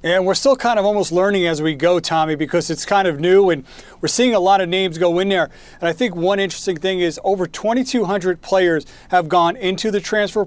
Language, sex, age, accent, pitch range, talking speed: English, male, 40-59, American, 165-190 Hz, 235 wpm